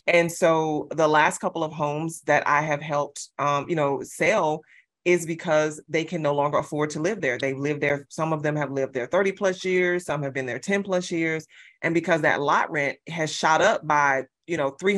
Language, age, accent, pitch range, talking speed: English, 30-49, American, 145-175 Hz, 225 wpm